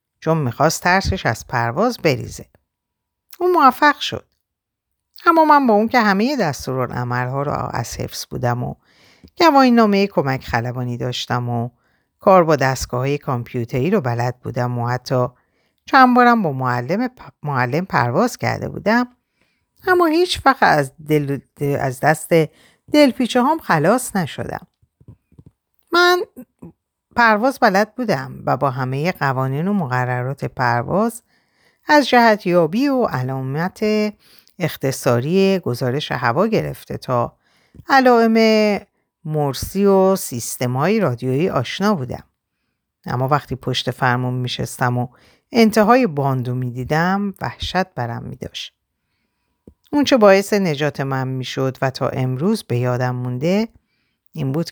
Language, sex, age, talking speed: Persian, female, 50-69, 125 wpm